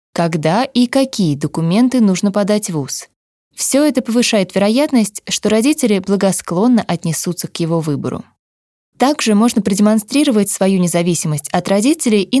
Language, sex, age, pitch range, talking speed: Russian, female, 20-39, 175-235 Hz, 130 wpm